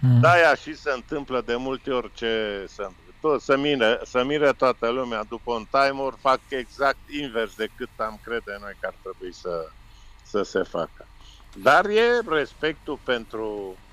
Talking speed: 165 wpm